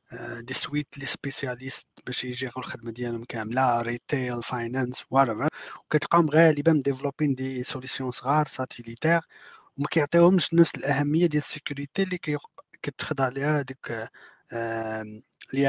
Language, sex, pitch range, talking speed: Arabic, male, 125-150 Hz, 110 wpm